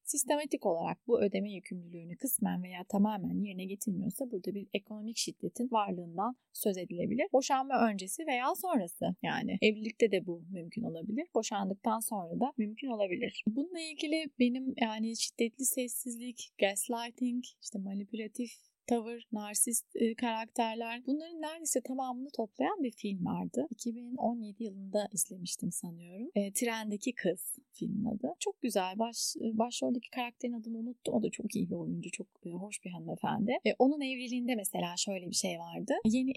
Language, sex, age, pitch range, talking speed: Turkish, female, 30-49, 195-250 Hz, 145 wpm